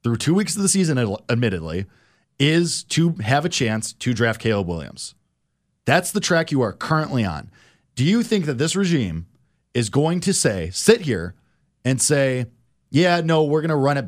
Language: English